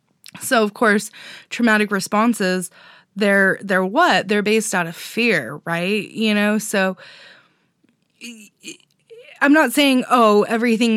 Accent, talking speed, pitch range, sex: American, 120 wpm, 190-240 Hz, female